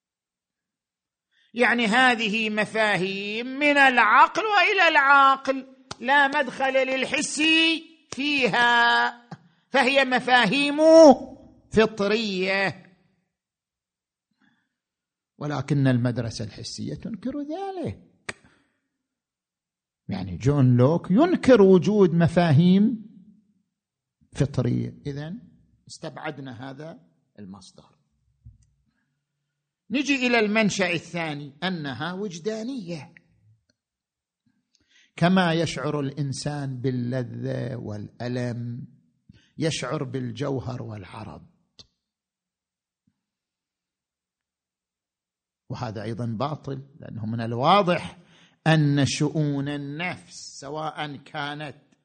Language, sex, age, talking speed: Arabic, male, 50-69, 65 wpm